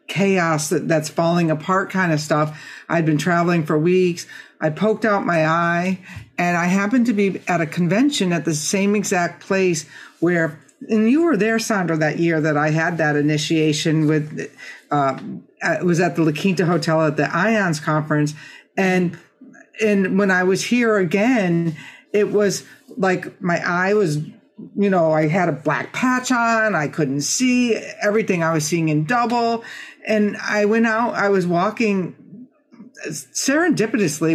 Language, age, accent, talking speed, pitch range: English, 50-69, American, 165 wpm, 155-205 Hz